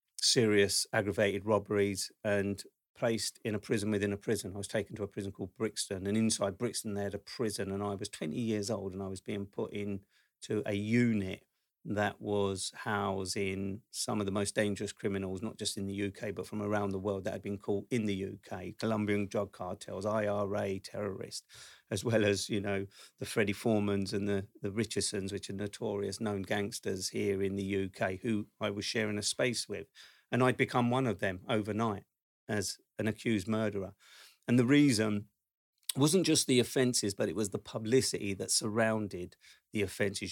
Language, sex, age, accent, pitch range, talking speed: English, male, 40-59, British, 100-110 Hz, 190 wpm